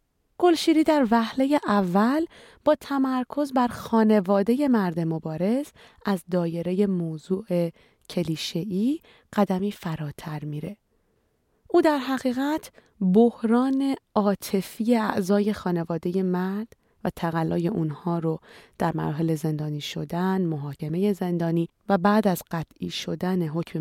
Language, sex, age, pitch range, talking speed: Persian, female, 30-49, 165-230 Hz, 105 wpm